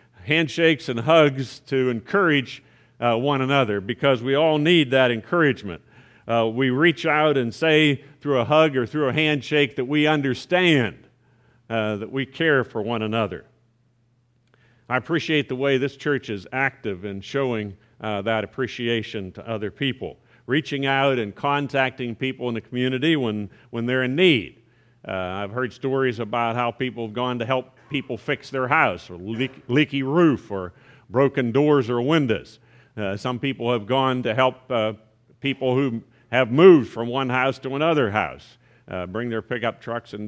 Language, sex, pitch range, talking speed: English, male, 115-140 Hz, 170 wpm